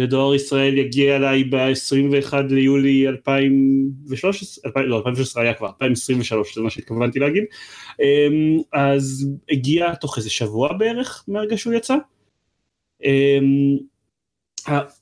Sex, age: male, 30-49